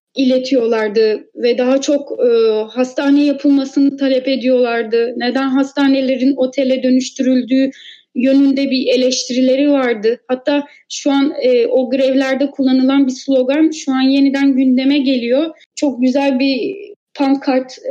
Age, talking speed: 30-49, 115 wpm